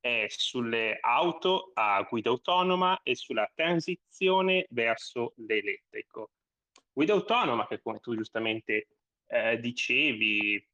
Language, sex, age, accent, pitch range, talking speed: Italian, male, 20-39, native, 110-135 Hz, 100 wpm